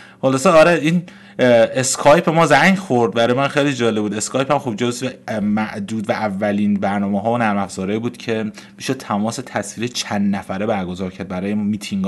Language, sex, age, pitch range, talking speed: Persian, male, 30-49, 100-125 Hz, 175 wpm